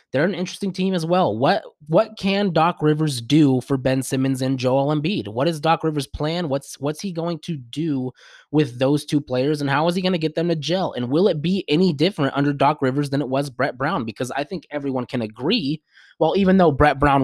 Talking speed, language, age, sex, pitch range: 235 wpm, English, 20-39, male, 135-165 Hz